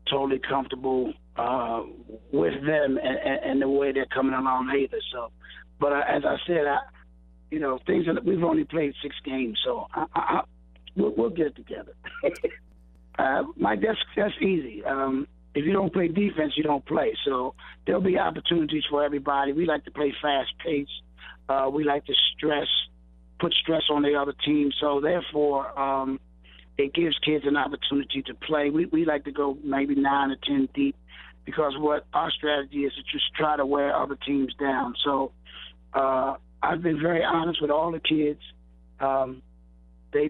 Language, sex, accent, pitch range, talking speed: English, male, American, 125-150 Hz, 170 wpm